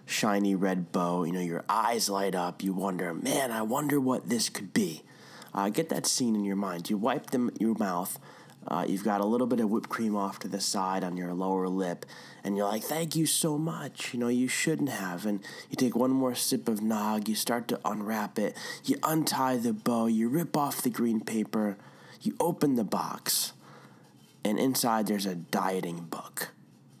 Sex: male